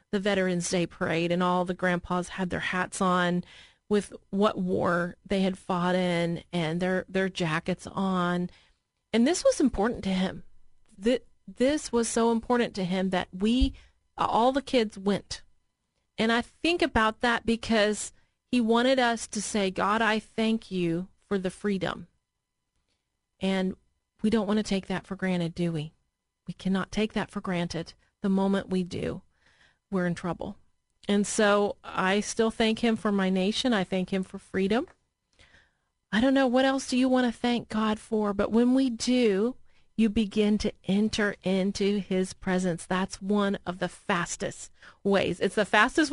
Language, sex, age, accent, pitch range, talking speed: English, female, 30-49, American, 185-230 Hz, 170 wpm